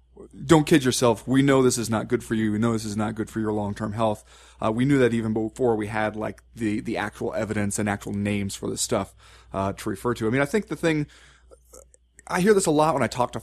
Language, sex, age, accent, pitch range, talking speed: English, male, 30-49, American, 110-145 Hz, 265 wpm